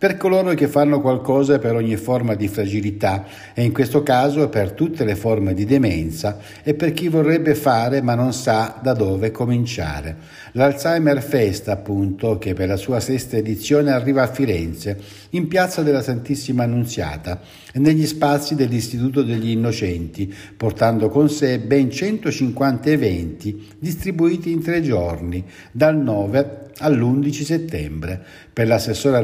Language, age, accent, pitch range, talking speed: Italian, 60-79, native, 100-145 Hz, 140 wpm